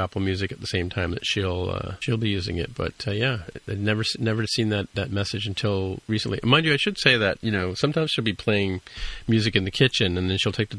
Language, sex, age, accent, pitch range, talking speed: English, male, 40-59, American, 95-115 Hz, 255 wpm